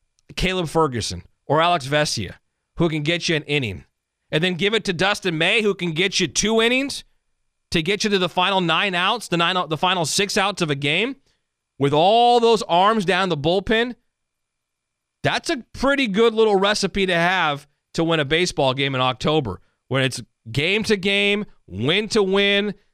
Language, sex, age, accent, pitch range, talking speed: English, male, 40-59, American, 130-185 Hz, 185 wpm